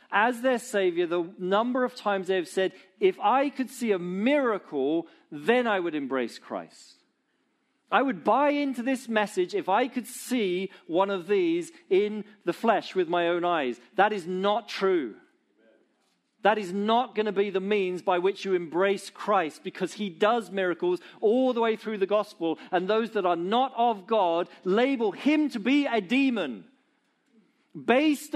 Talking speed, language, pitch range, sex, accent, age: 175 wpm, English, 185-280 Hz, male, British, 40-59